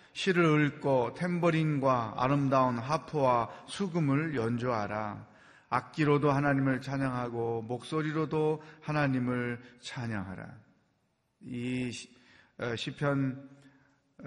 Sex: male